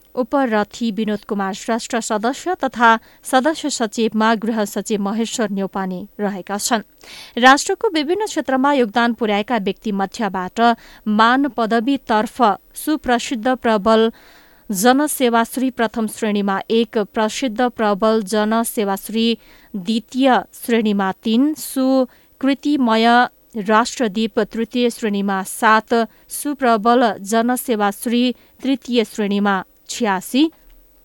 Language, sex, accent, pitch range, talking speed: English, female, Indian, 210-245 Hz, 80 wpm